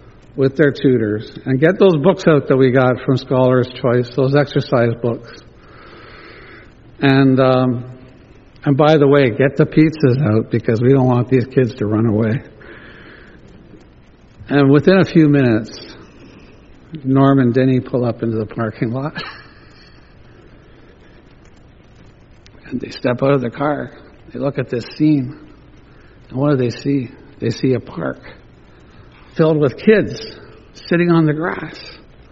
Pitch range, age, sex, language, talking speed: 125-155 Hz, 60-79, male, English, 145 wpm